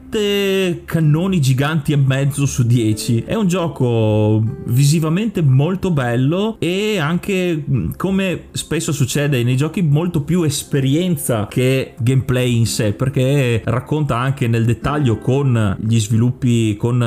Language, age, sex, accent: Italian, 30-49, male, native